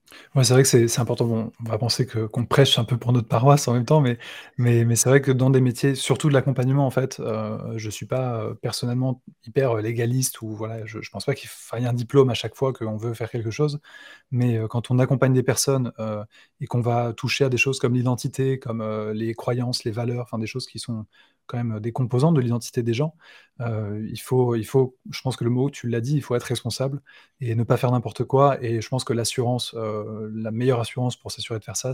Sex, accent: male, French